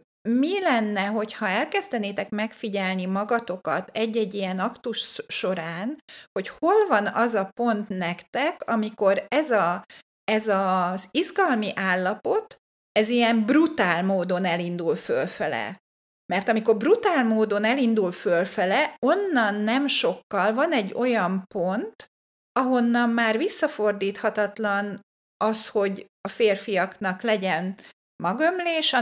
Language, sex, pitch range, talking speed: Hungarian, female, 200-255 Hz, 110 wpm